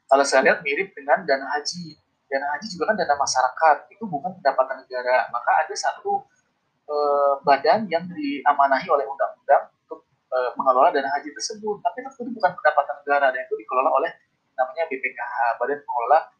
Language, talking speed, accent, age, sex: Indonesian, 165 wpm, native, 30-49, male